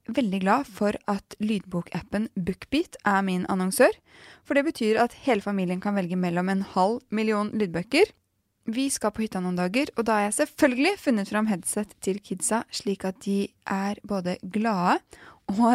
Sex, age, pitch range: female, 20-39, 185-235 Hz